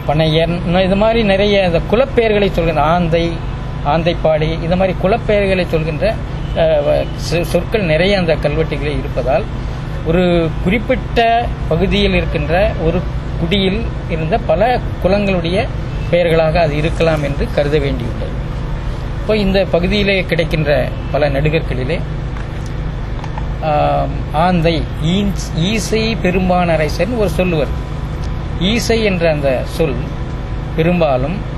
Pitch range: 140-175 Hz